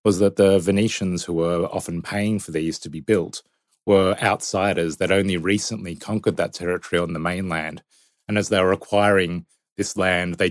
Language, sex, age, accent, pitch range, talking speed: English, male, 30-49, Australian, 85-95 Hz, 185 wpm